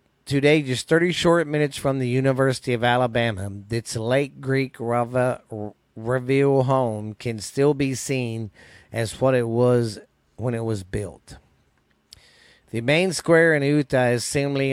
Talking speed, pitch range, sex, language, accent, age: 145 wpm, 115-140 Hz, male, English, American, 40-59